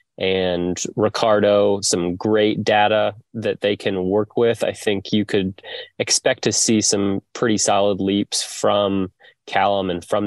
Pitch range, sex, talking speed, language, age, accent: 95-105 Hz, male, 145 wpm, English, 20-39, American